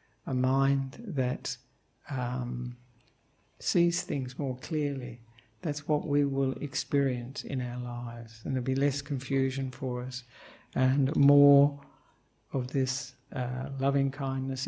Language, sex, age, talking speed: English, male, 60-79, 120 wpm